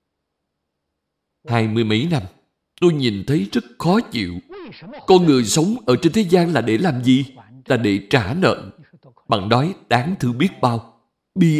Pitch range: 110-165 Hz